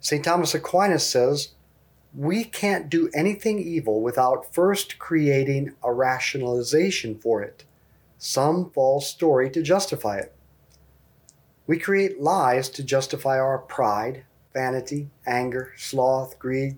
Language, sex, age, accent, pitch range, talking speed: English, male, 40-59, American, 125-165 Hz, 120 wpm